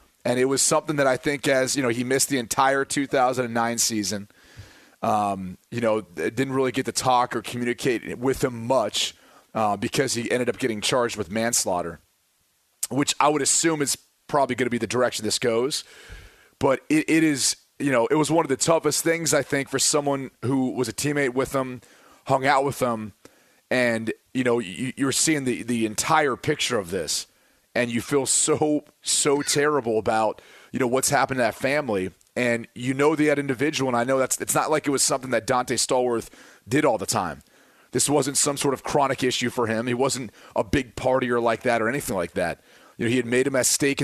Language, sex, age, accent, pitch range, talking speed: English, male, 30-49, American, 120-140 Hz, 210 wpm